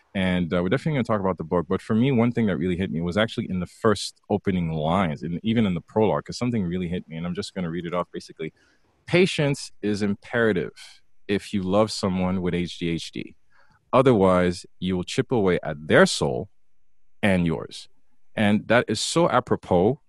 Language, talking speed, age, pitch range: English, 205 wpm, 30-49, 90-110 Hz